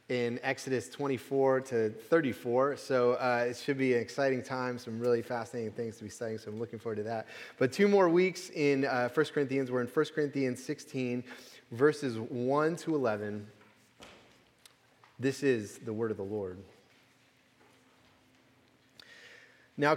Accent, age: American, 30-49